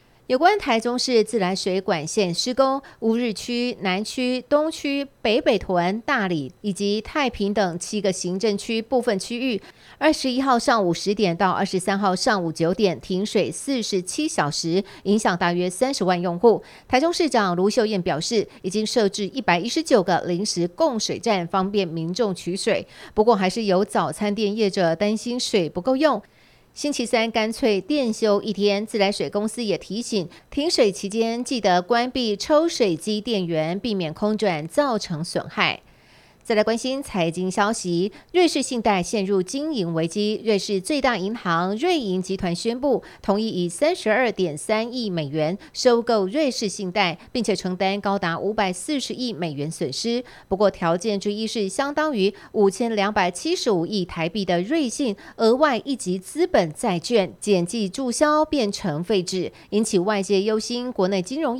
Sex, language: female, Chinese